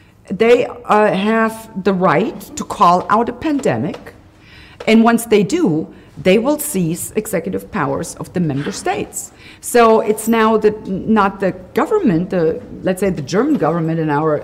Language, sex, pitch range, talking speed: English, female, 175-235 Hz, 160 wpm